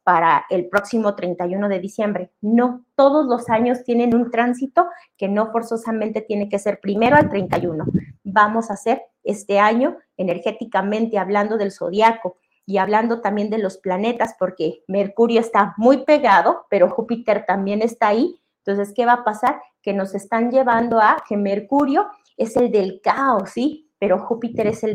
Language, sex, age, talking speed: Spanish, female, 30-49, 165 wpm